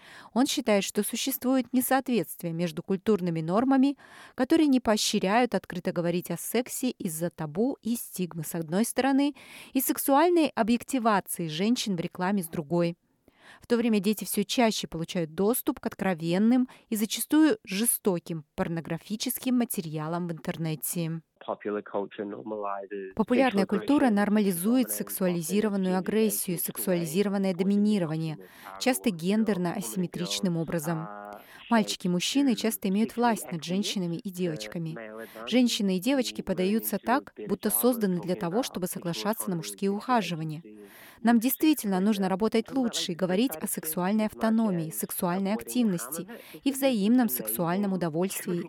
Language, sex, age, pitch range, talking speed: Russian, female, 20-39, 175-235 Hz, 120 wpm